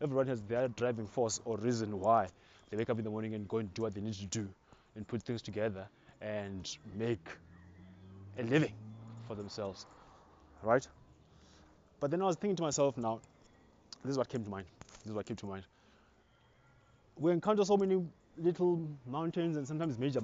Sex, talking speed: male, 185 wpm